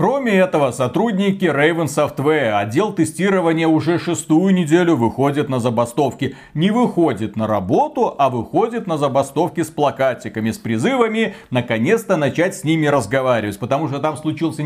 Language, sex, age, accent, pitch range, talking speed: Russian, male, 40-59, native, 140-190 Hz, 140 wpm